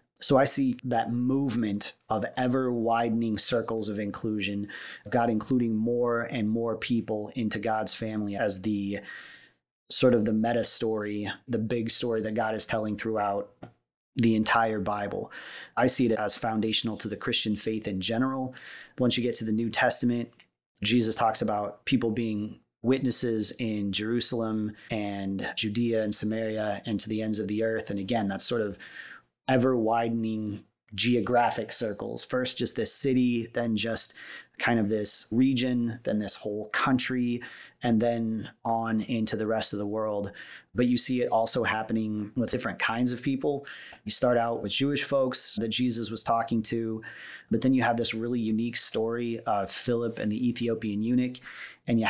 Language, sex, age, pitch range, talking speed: English, male, 30-49, 110-120 Hz, 165 wpm